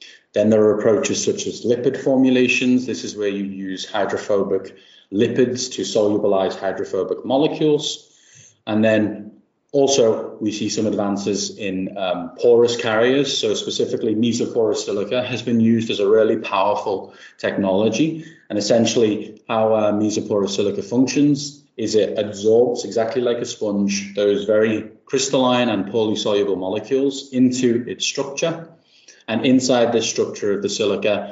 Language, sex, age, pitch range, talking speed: English, male, 30-49, 105-145 Hz, 140 wpm